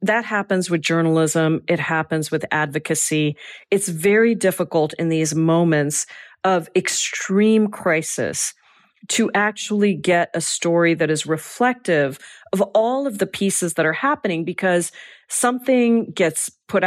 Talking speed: 130 wpm